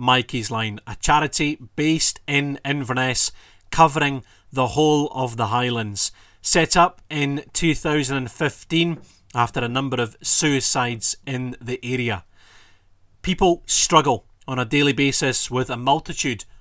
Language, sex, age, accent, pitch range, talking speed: English, male, 30-49, British, 120-155 Hz, 125 wpm